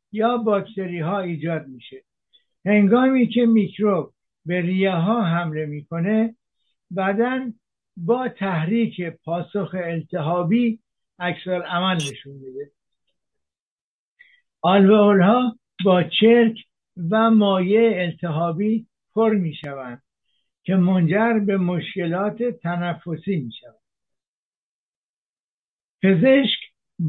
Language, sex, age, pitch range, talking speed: Persian, male, 60-79, 165-210 Hz, 80 wpm